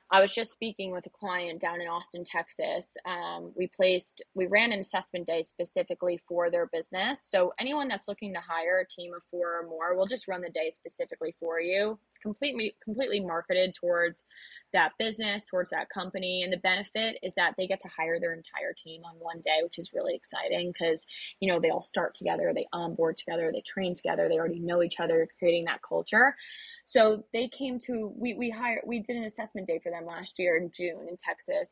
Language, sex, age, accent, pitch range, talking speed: English, female, 20-39, American, 170-215 Hz, 215 wpm